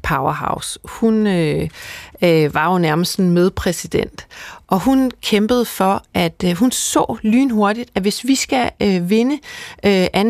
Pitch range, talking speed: 185-230 Hz, 145 wpm